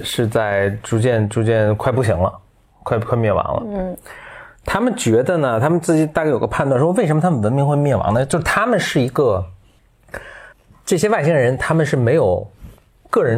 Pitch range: 105-145 Hz